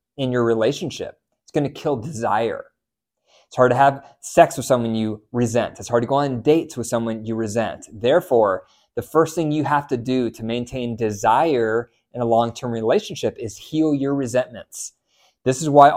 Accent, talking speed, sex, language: American, 185 wpm, male, English